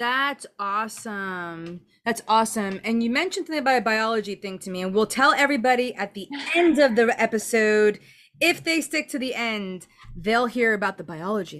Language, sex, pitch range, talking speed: English, female, 210-260 Hz, 180 wpm